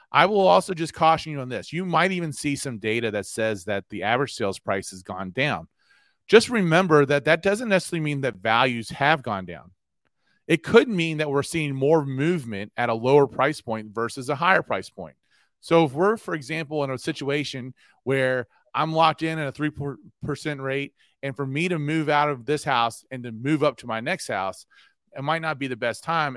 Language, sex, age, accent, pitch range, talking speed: English, male, 30-49, American, 125-160 Hz, 215 wpm